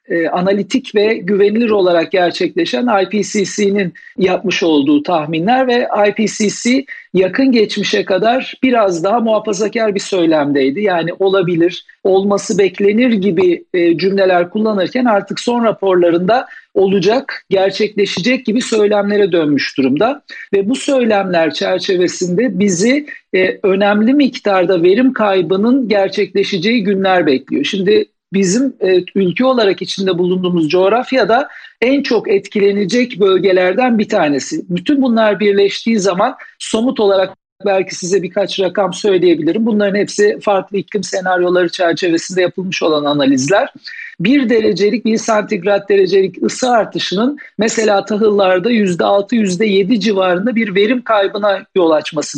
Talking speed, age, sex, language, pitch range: 110 wpm, 50-69, male, Turkish, 185-230 Hz